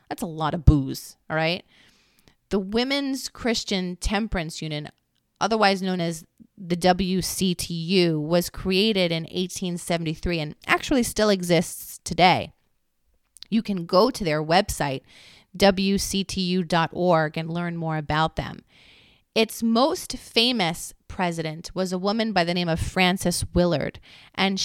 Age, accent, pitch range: 30-49, American, 165-200 Hz